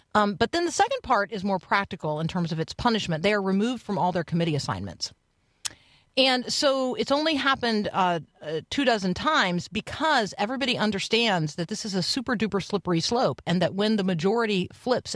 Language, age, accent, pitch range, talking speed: English, 50-69, American, 170-225 Hz, 190 wpm